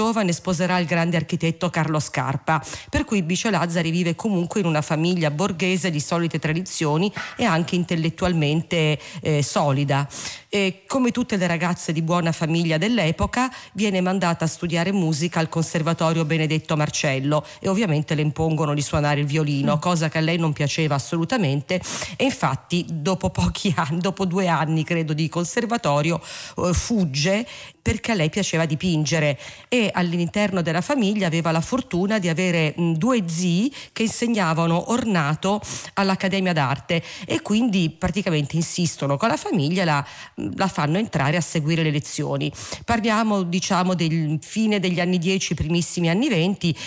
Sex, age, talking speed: female, 40-59, 145 wpm